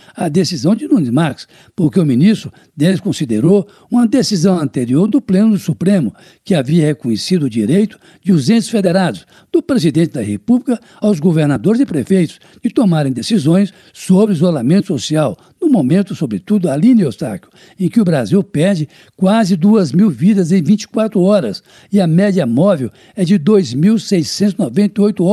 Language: Portuguese